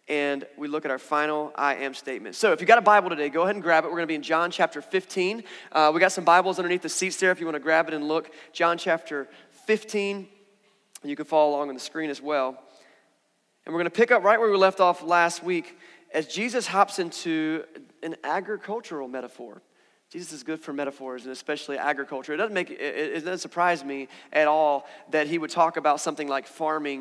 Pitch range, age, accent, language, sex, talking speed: 150-190 Hz, 30-49, American, English, male, 230 wpm